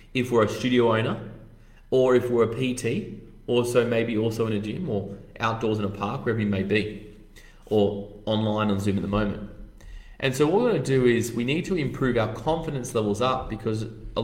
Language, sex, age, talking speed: English, male, 20-39, 210 wpm